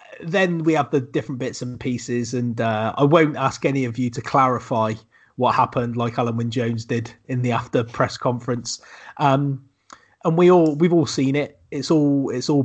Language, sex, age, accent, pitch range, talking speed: English, male, 30-49, British, 120-145 Hz, 200 wpm